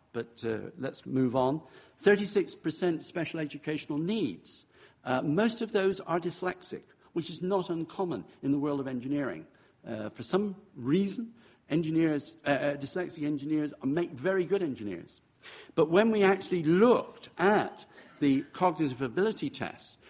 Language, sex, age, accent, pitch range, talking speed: English, male, 60-79, British, 125-170 Hz, 135 wpm